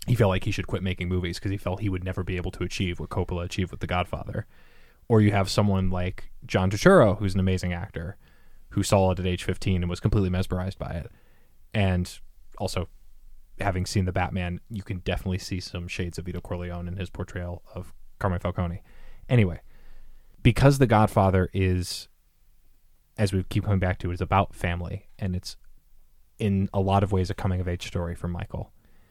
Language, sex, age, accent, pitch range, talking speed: English, male, 20-39, American, 90-110 Hz, 195 wpm